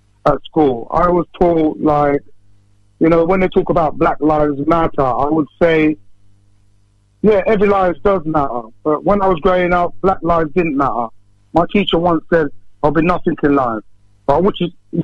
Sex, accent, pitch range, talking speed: male, British, 115-160 Hz, 185 wpm